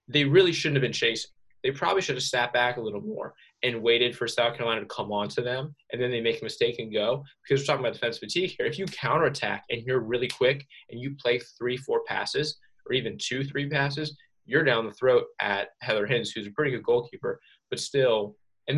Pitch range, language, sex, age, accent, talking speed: 110-150 Hz, English, male, 20-39, American, 235 wpm